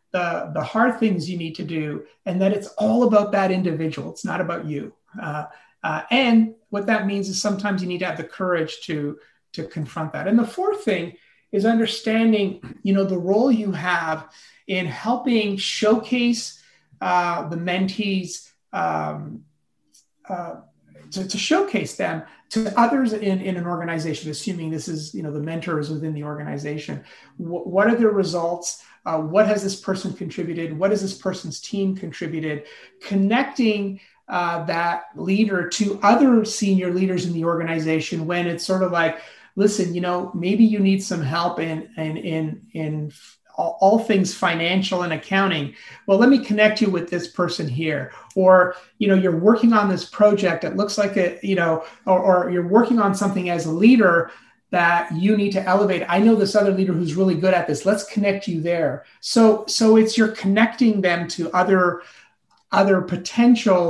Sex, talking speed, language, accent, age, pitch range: male, 175 wpm, English, American, 30-49, 165-205 Hz